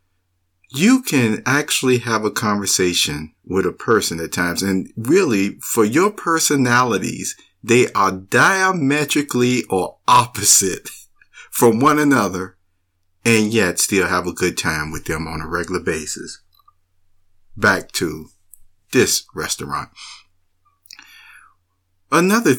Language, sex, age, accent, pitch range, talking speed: English, male, 50-69, American, 90-140 Hz, 110 wpm